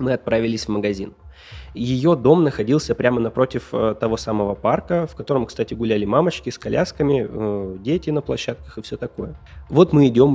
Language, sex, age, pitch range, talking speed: Russian, male, 20-39, 110-130 Hz, 170 wpm